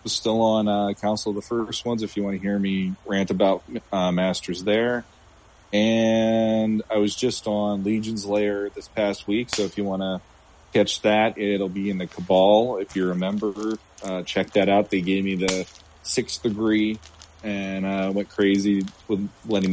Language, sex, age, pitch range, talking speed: English, male, 30-49, 95-110 Hz, 190 wpm